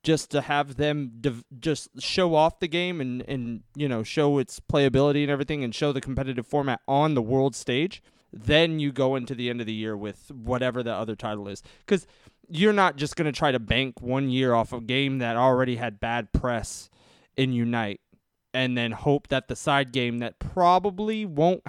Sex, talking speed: male, 205 wpm